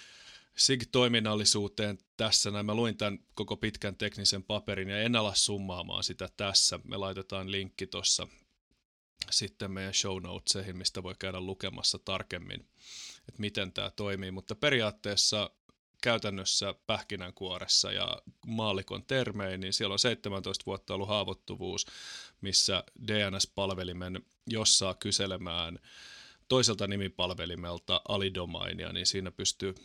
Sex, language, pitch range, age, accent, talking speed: male, Finnish, 95-105 Hz, 30-49, native, 115 wpm